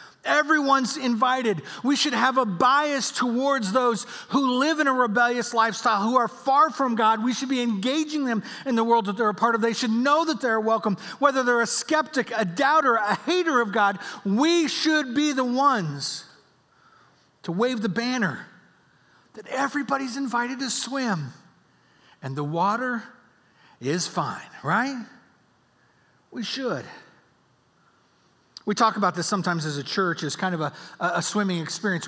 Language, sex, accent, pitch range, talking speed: English, male, American, 185-245 Hz, 160 wpm